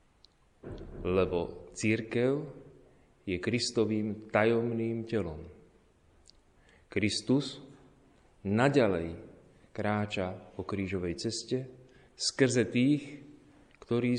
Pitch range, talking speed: 90-115 Hz, 65 wpm